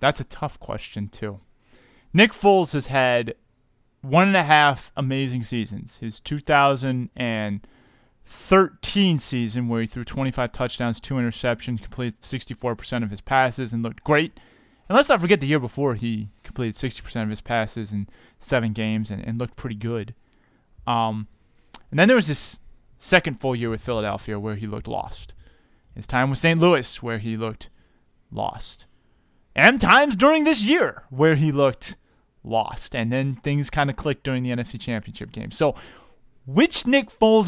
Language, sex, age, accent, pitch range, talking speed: English, male, 20-39, American, 115-180 Hz, 165 wpm